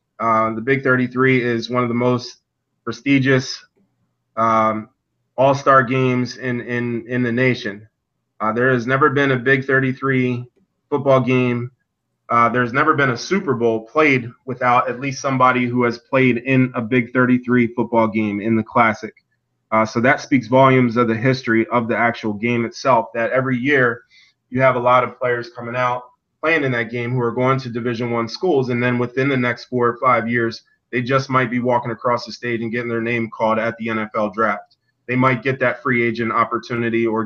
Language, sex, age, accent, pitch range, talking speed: English, male, 20-39, American, 115-130 Hz, 190 wpm